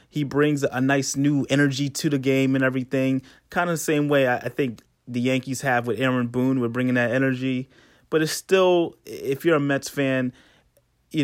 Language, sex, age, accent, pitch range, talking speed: English, male, 30-49, American, 125-150 Hz, 200 wpm